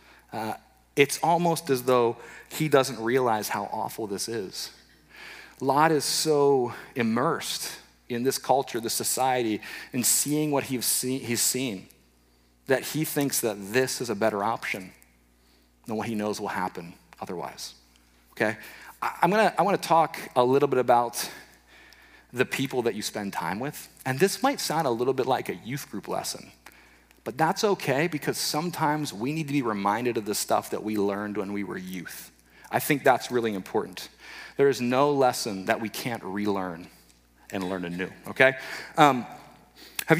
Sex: male